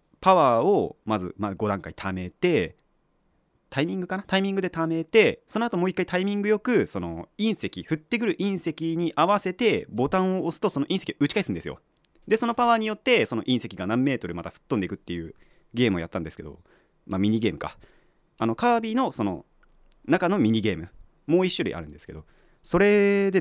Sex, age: male, 30-49